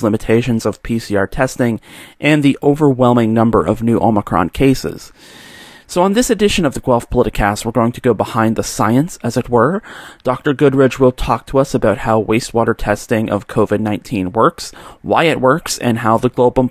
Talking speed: 185 wpm